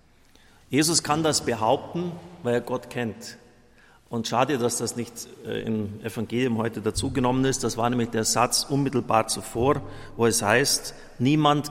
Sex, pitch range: male, 105-140 Hz